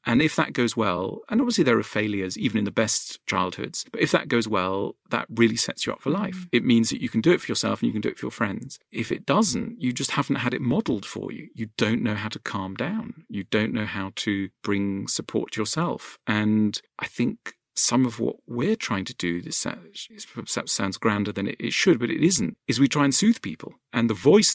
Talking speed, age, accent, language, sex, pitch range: 240 wpm, 40-59, British, English, male, 100-125 Hz